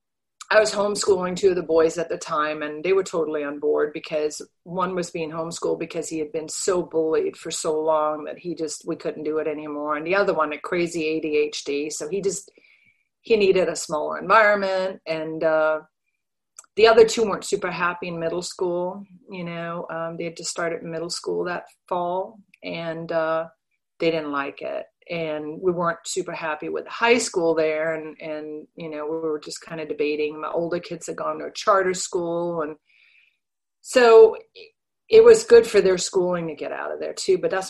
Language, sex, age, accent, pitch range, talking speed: English, female, 40-59, American, 160-200 Hz, 200 wpm